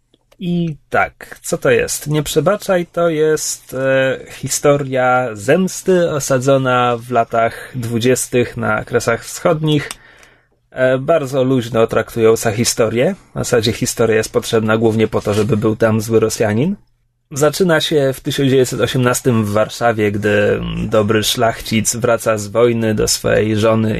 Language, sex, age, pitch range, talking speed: Polish, male, 30-49, 115-145 Hz, 130 wpm